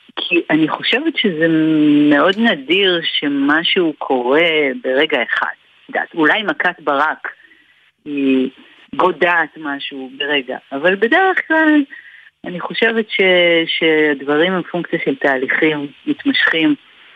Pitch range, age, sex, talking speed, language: 150-215 Hz, 50-69, female, 105 wpm, Hebrew